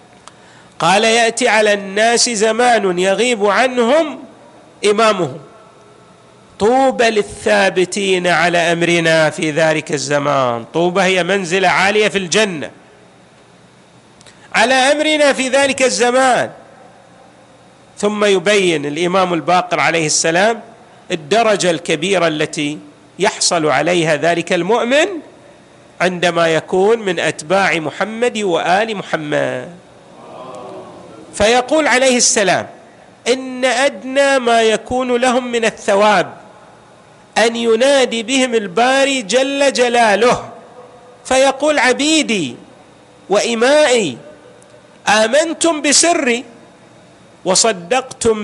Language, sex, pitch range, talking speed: Arabic, male, 180-245 Hz, 85 wpm